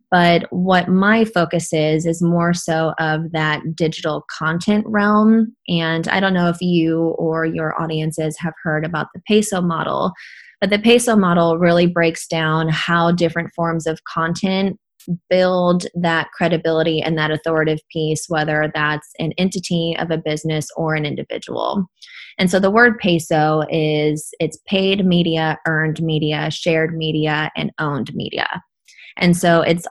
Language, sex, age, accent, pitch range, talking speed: English, female, 20-39, American, 155-180 Hz, 155 wpm